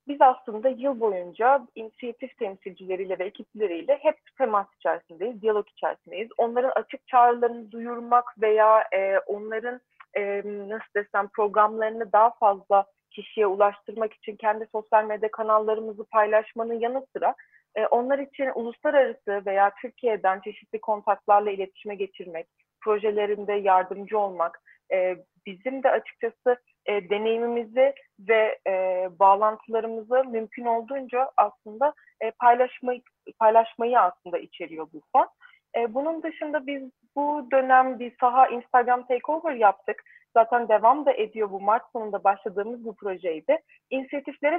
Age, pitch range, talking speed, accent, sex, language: 30-49, 210-260 Hz, 120 wpm, native, female, Turkish